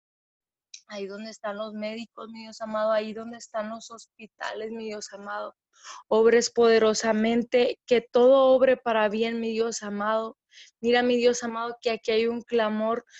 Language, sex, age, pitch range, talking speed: Spanish, female, 20-39, 215-230 Hz, 160 wpm